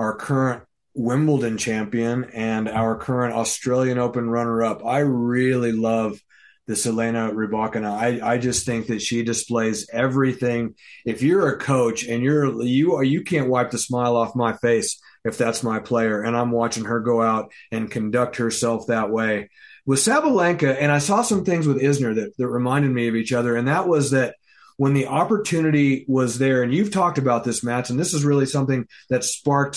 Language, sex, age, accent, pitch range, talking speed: English, male, 30-49, American, 120-145 Hz, 185 wpm